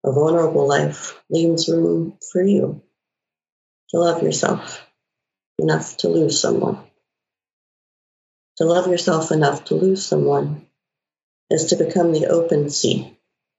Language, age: English, 40-59